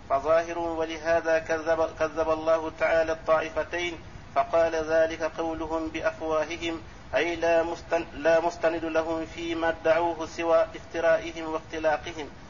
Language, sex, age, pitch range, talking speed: Arabic, male, 50-69, 160-170 Hz, 105 wpm